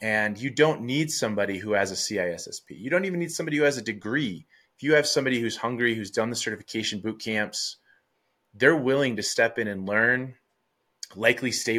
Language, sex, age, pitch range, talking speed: English, male, 20-39, 105-125 Hz, 200 wpm